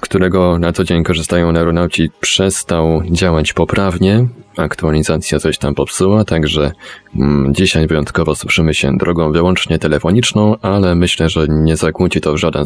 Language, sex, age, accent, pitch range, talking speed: Polish, male, 20-39, native, 80-100 Hz, 140 wpm